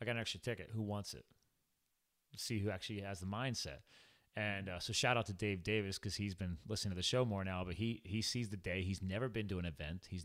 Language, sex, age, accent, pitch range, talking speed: English, male, 30-49, American, 90-120 Hz, 260 wpm